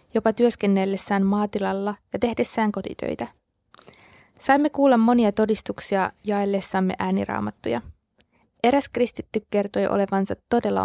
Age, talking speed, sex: 20-39, 95 wpm, female